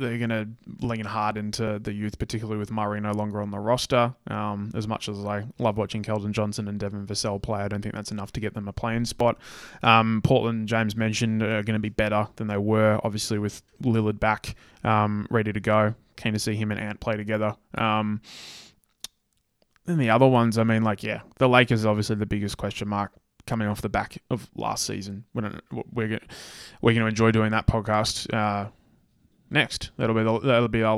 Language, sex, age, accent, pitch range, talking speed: English, male, 20-39, Australian, 105-115 Hz, 215 wpm